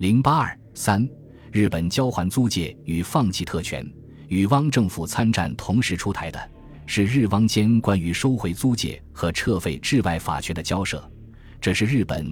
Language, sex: Chinese, male